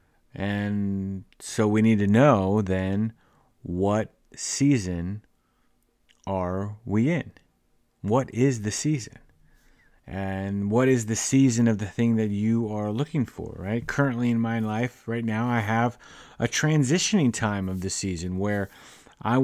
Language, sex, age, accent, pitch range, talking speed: English, male, 30-49, American, 100-125 Hz, 140 wpm